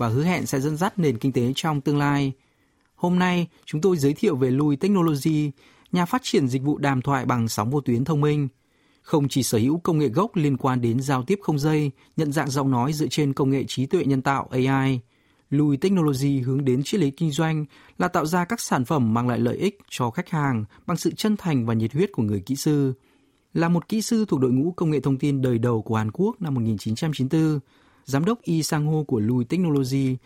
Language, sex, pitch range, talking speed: Vietnamese, male, 130-160 Hz, 235 wpm